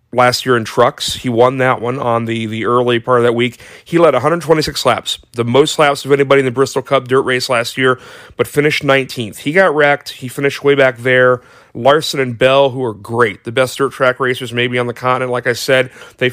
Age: 30-49